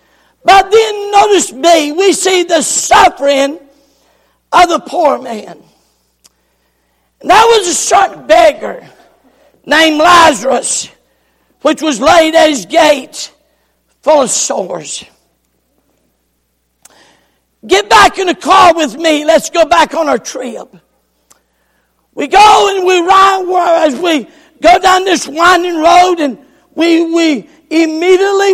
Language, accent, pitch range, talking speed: English, American, 275-365 Hz, 120 wpm